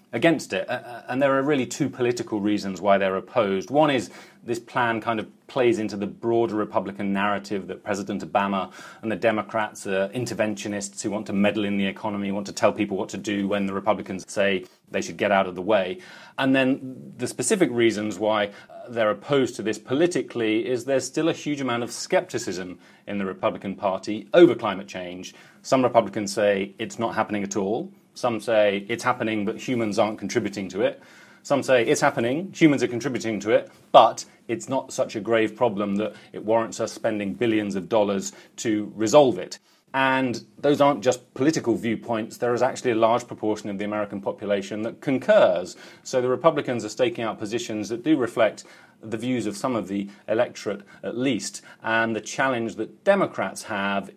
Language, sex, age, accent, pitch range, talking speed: English, male, 30-49, British, 100-125 Hz, 190 wpm